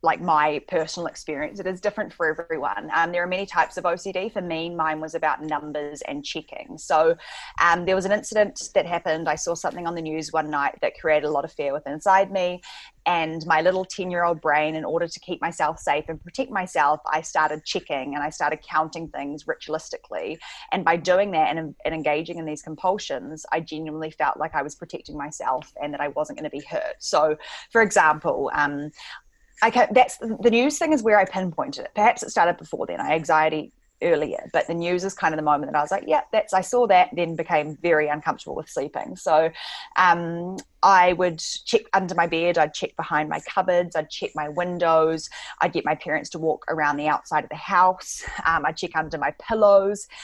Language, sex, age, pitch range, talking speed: English, female, 20-39, 155-185 Hz, 215 wpm